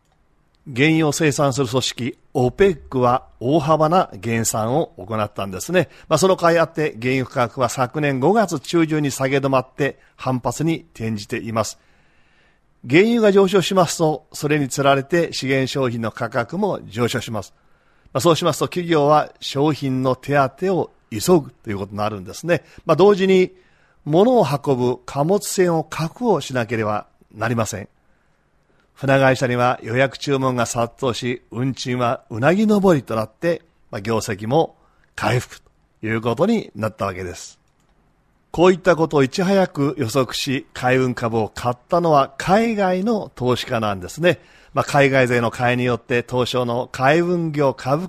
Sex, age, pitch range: male, 40-59, 120-170 Hz